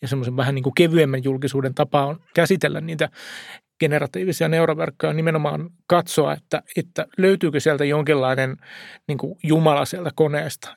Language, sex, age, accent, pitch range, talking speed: Finnish, male, 30-49, native, 140-165 Hz, 130 wpm